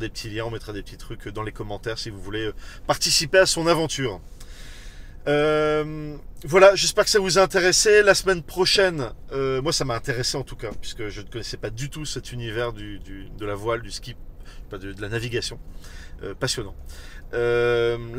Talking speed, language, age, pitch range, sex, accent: 200 wpm, French, 40-59, 115-150 Hz, male, French